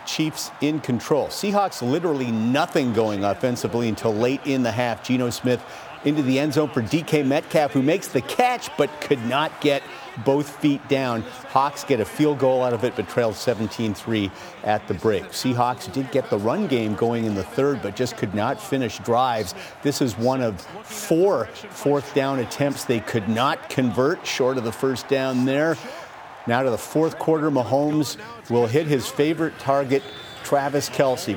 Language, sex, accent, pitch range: English, male, American, 120-145 Hz